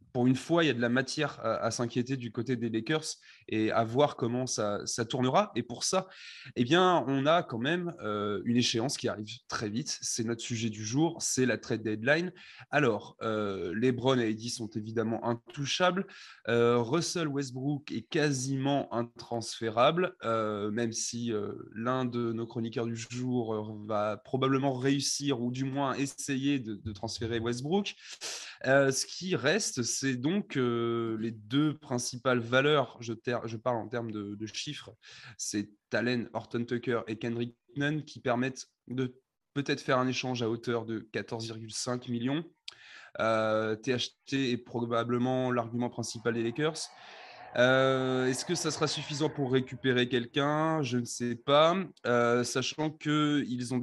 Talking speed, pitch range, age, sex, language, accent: 165 wpm, 115-140 Hz, 20-39, male, French, French